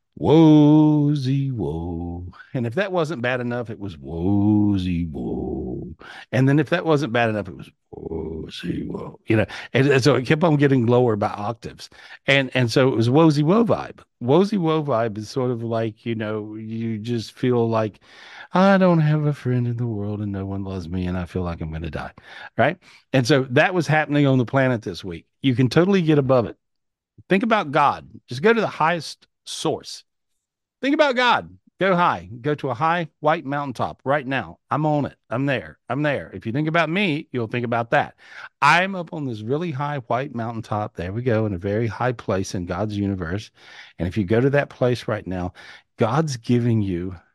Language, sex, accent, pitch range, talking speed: English, male, American, 105-145 Hz, 205 wpm